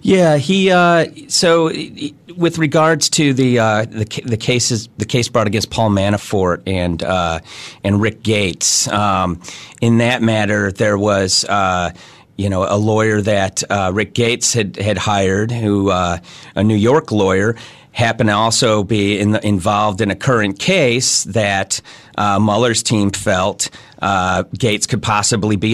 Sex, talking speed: male, 155 wpm